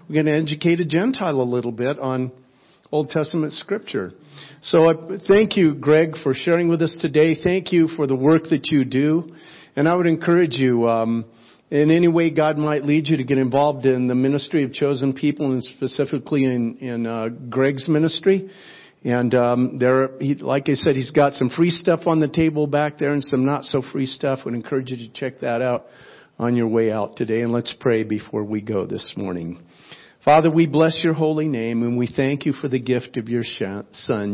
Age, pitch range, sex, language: 50-69, 120-155 Hz, male, English